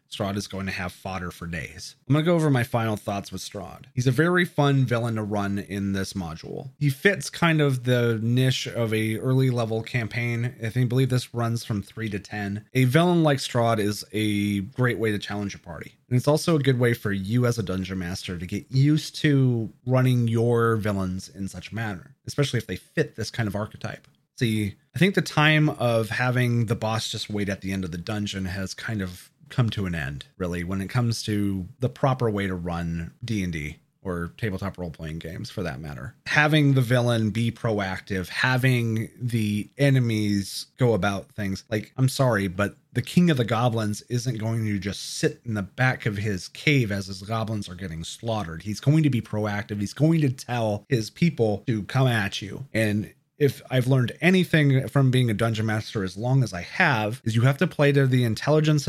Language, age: English, 30-49